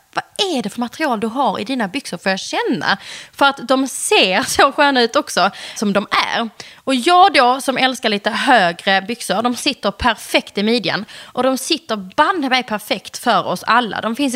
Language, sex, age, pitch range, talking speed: Swedish, female, 20-39, 205-270 Hz, 195 wpm